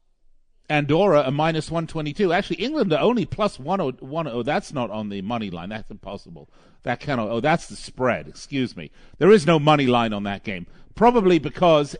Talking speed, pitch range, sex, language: 175 wpm, 120-165 Hz, male, English